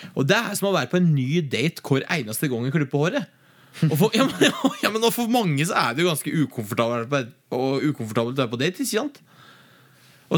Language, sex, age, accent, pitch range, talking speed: English, male, 20-39, Norwegian, 130-180 Hz, 220 wpm